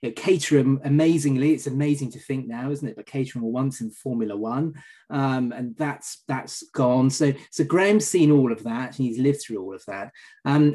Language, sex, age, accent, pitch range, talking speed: English, male, 30-49, British, 130-165 Hz, 210 wpm